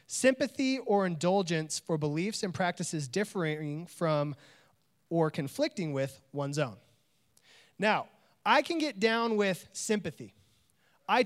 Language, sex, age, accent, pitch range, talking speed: English, male, 30-49, American, 165-235 Hz, 115 wpm